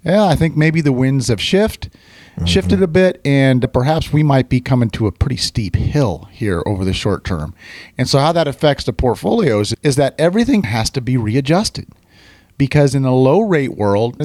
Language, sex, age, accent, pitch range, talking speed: English, male, 40-59, American, 105-145 Hz, 195 wpm